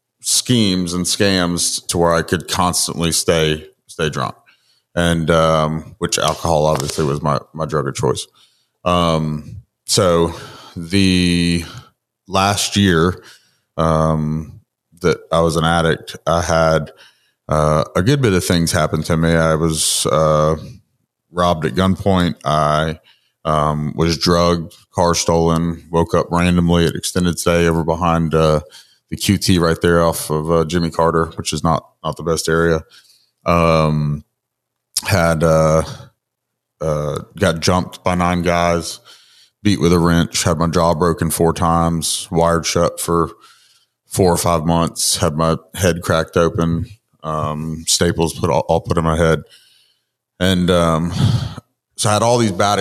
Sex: male